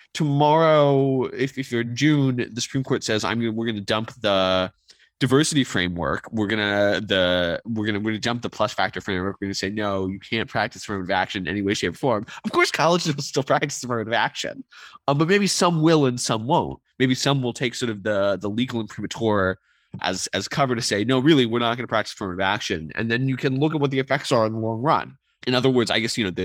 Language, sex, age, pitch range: English, male, 20-39, 95-125 Hz